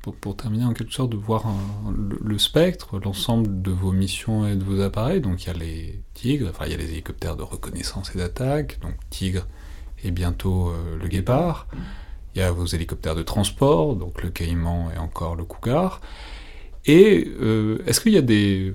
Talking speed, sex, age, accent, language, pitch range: 195 wpm, male, 30-49, French, French, 85-100 Hz